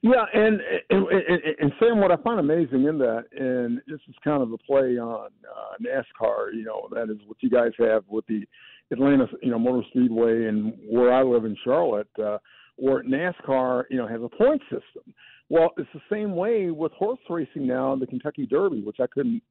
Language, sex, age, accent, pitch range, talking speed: English, male, 50-69, American, 120-150 Hz, 205 wpm